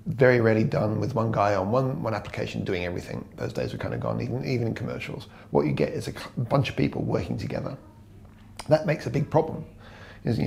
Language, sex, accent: English, male, British